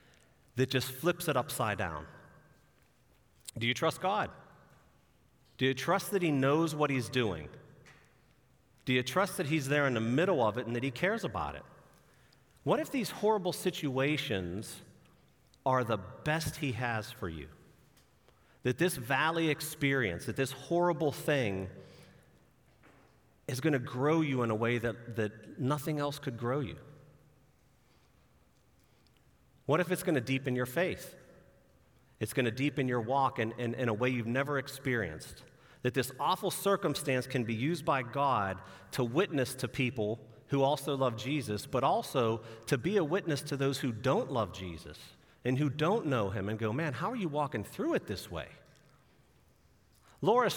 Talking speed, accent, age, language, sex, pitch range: 165 wpm, American, 40-59, English, male, 115-150 Hz